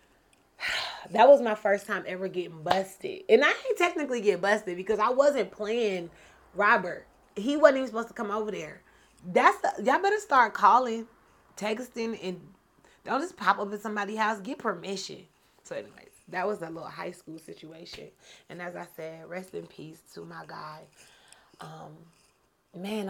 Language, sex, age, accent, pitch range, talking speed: English, female, 30-49, American, 165-215 Hz, 170 wpm